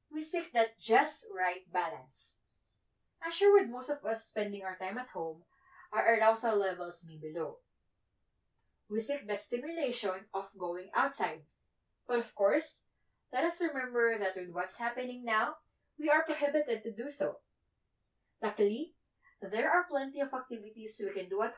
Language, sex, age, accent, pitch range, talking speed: English, female, 20-39, Filipino, 200-285 Hz, 155 wpm